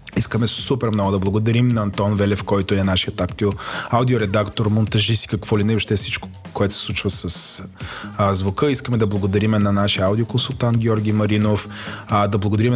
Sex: male